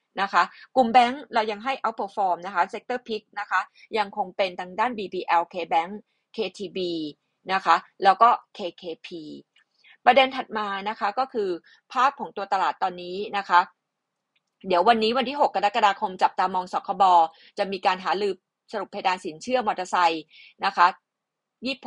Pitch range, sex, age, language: 190-230 Hz, female, 30-49, Thai